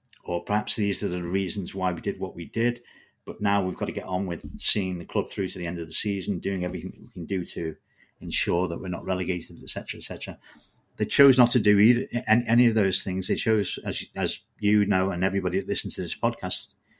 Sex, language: male, English